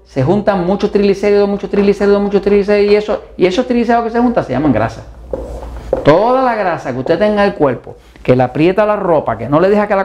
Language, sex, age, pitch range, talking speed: Spanish, male, 50-69, 140-220 Hz, 235 wpm